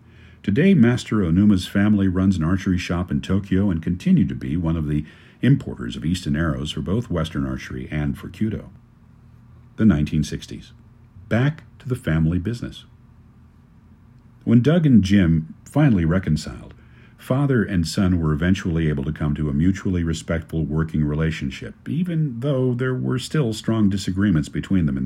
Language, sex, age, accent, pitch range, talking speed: English, male, 50-69, American, 80-115 Hz, 155 wpm